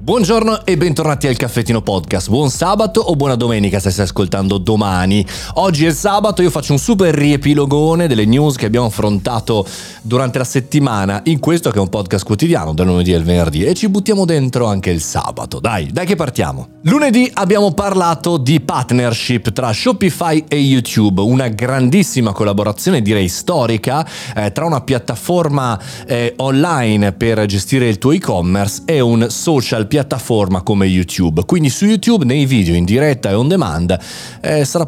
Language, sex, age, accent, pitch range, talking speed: Italian, male, 30-49, native, 105-160 Hz, 165 wpm